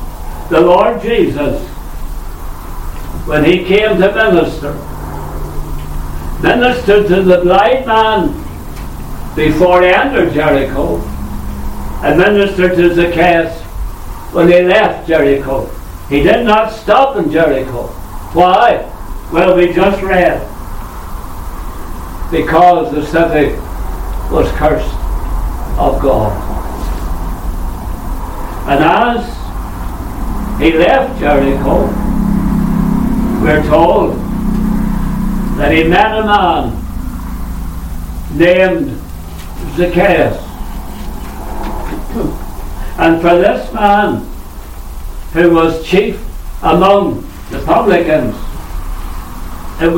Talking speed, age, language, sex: 80 wpm, 60-79, English, male